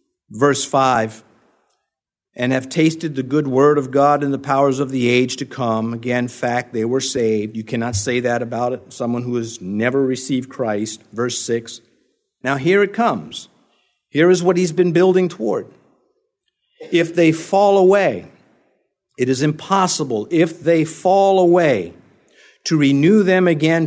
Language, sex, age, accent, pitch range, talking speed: English, male, 50-69, American, 125-175 Hz, 160 wpm